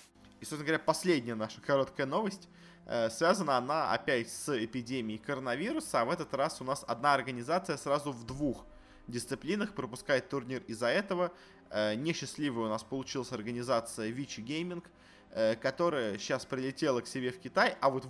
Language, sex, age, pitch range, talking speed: Russian, male, 20-39, 115-145 Hz, 160 wpm